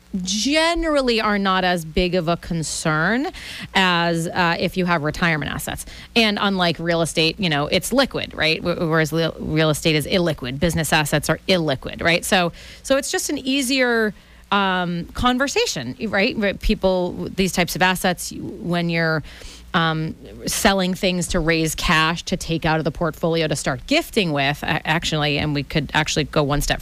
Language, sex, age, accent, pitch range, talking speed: English, female, 30-49, American, 155-195 Hz, 165 wpm